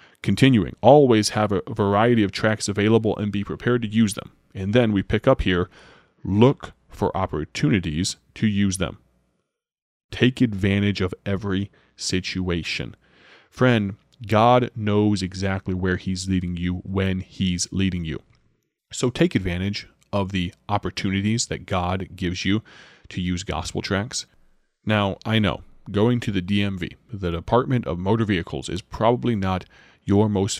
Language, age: English, 30-49